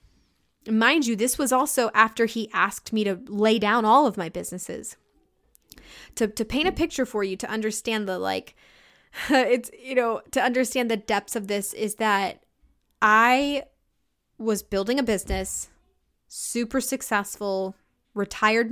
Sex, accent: female, American